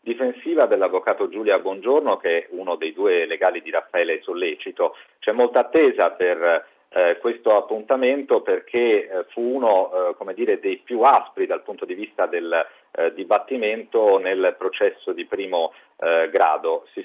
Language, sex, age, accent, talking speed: Italian, male, 50-69, native, 155 wpm